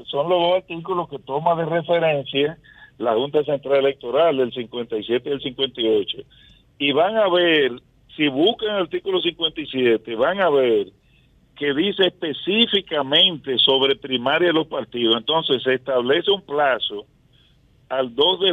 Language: Spanish